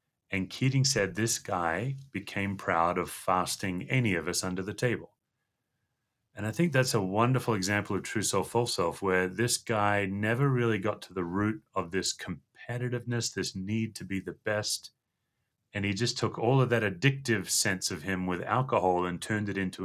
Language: English